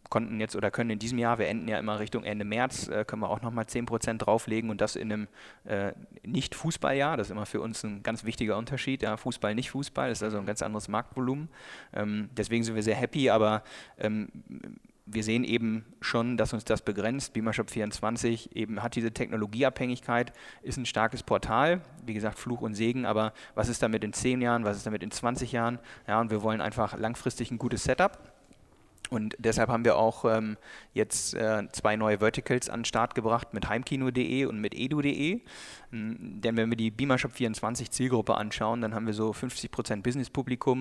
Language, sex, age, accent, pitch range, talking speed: German, male, 30-49, German, 110-120 Hz, 200 wpm